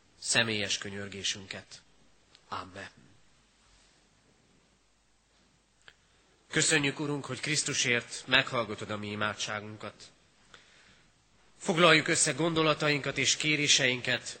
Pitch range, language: 115-145 Hz, Hungarian